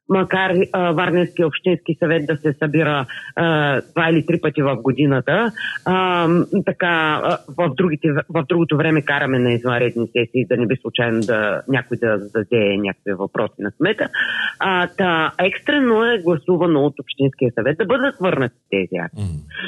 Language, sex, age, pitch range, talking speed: Bulgarian, female, 30-49, 140-190 Hz, 160 wpm